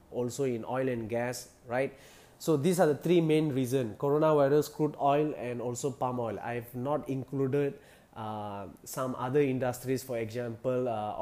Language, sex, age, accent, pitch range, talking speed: English, male, 20-39, Indian, 120-135 Hz, 165 wpm